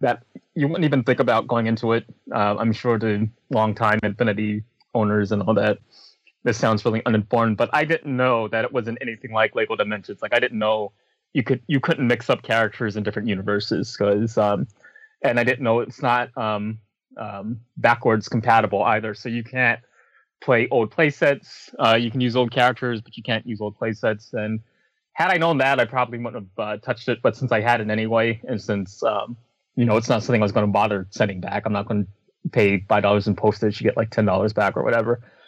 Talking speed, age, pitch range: 220 wpm, 20-39, 110-130 Hz